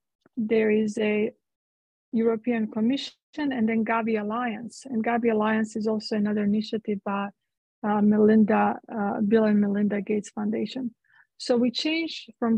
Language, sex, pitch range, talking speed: English, female, 215-240 Hz, 140 wpm